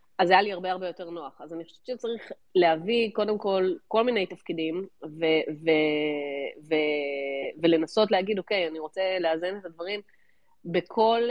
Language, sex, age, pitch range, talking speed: Hebrew, female, 30-49, 165-200 Hz, 165 wpm